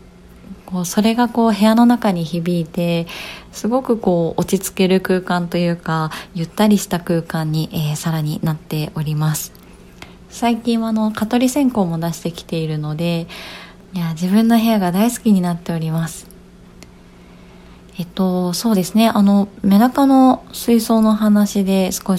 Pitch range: 170-215 Hz